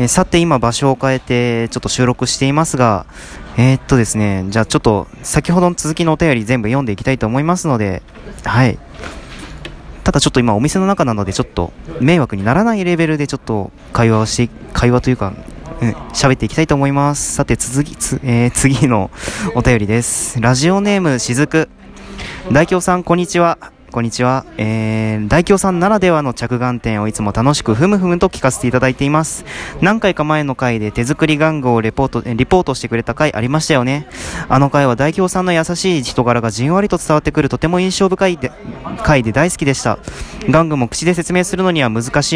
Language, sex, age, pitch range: Japanese, male, 20-39, 120-165 Hz